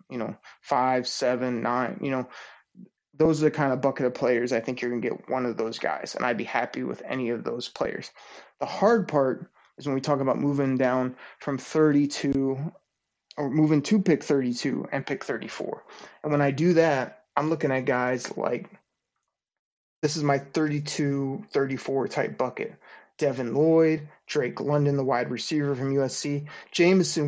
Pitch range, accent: 130-155 Hz, American